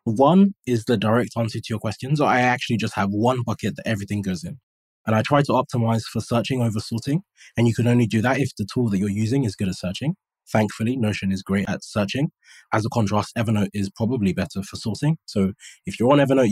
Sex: male